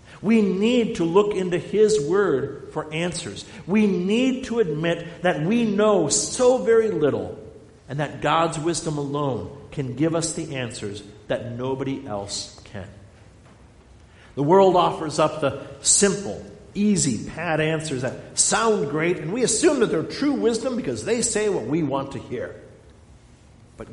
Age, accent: 50-69, American